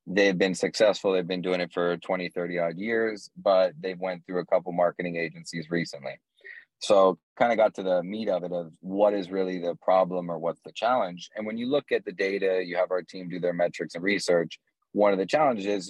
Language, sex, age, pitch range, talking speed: English, male, 30-49, 90-100 Hz, 225 wpm